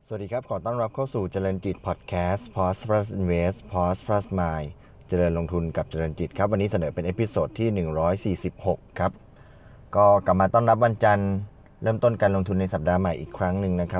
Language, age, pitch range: Thai, 20-39, 85-105 Hz